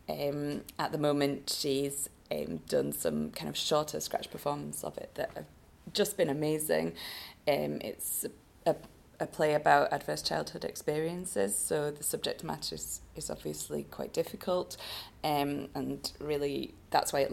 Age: 20-39